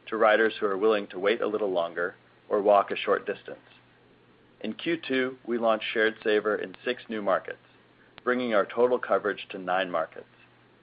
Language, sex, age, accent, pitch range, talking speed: English, male, 40-59, American, 105-130 Hz, 175 wpm